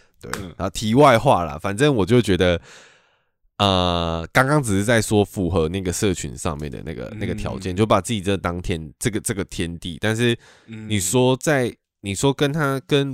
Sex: male